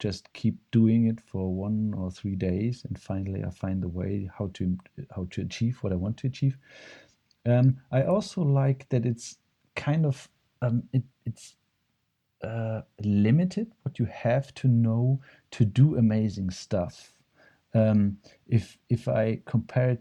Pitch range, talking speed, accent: 100-135 Hz, 155 wpm, German